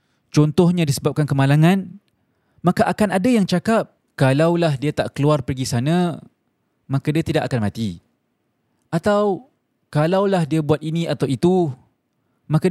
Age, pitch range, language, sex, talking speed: 20-39, 130-170 Hz, Malay, male, 125 wpm